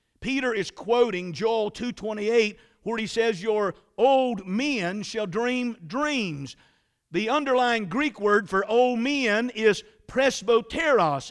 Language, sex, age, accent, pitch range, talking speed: English, male, 50-69, American, 180-230 Hz, 120 wpm